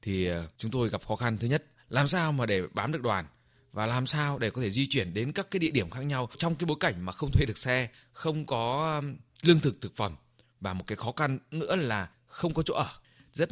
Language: Vietnamese